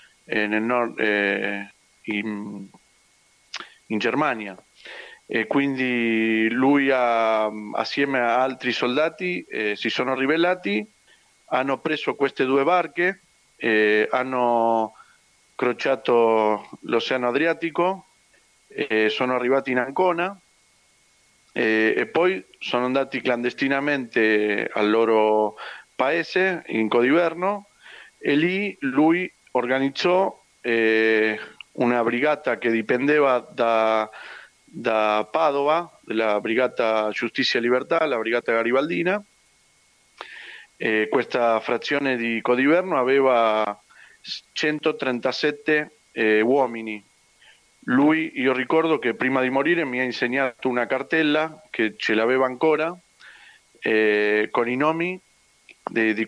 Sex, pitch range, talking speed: male, 110-155 Hz, 100 wpm